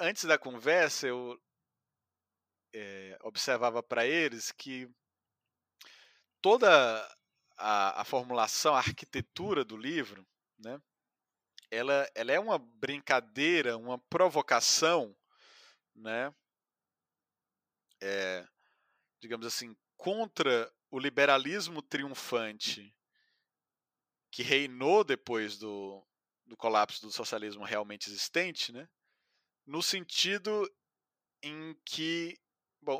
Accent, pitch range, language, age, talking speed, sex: Brazilian, 115-150 Hz, Portuguese, 30-49, 85 wpm, male